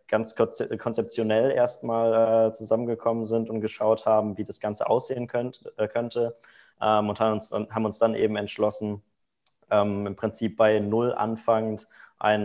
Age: 20-39